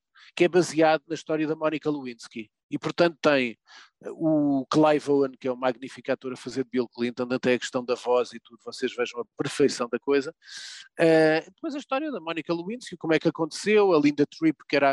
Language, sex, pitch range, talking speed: Portuguese, male, 130-160 Hz, 215 wpm